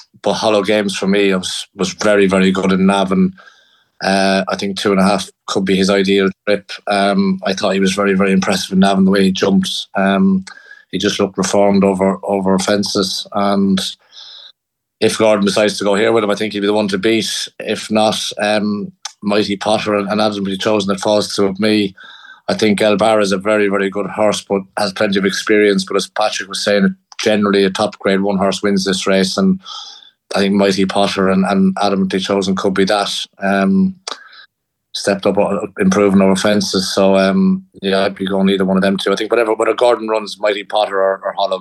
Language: English